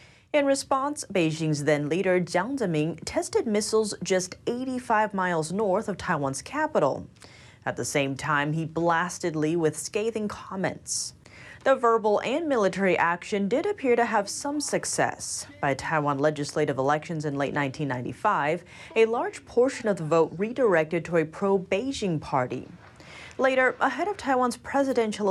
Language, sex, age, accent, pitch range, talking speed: English, female, 30-49, American, 155-240 Hz, 140 wpm